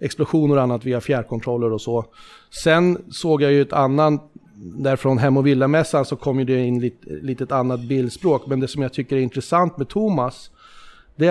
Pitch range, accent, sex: 125-145 Hz, native, male